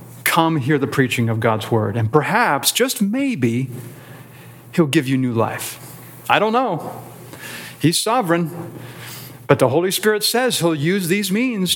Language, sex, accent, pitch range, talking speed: English, male, American, 120-165 Hz, 155 wpm